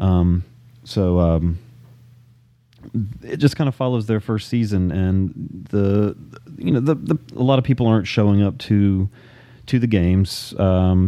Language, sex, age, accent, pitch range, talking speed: English, male, 30-49, American, 90-120 Hz, 160 wpm